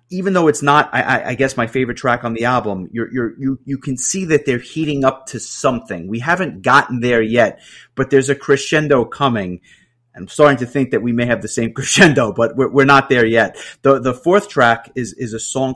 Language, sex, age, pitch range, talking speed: English, male, 30-49, 115-140 Hz, 230 wpm